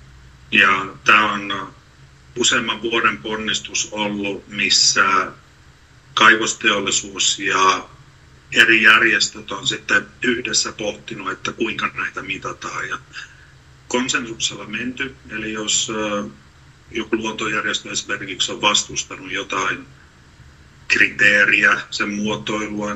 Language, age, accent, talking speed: Finnish, 50-69, native, 85 wpm